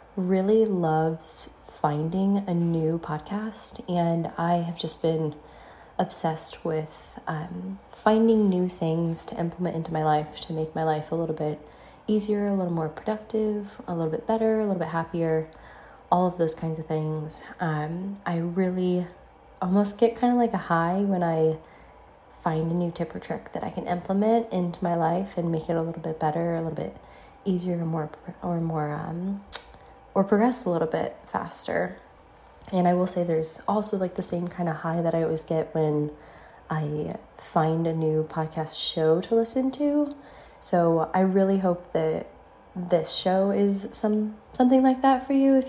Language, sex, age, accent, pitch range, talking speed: English, female, 20-39, American, 160-205 Hz, 175 wpm